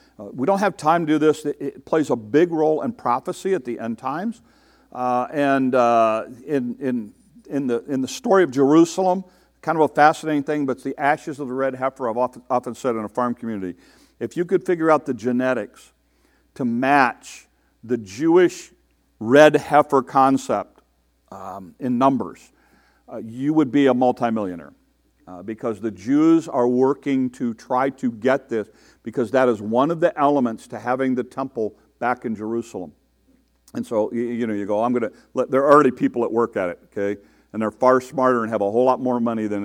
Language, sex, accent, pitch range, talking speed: English, male, American, 115-150 Hz, 200 wpm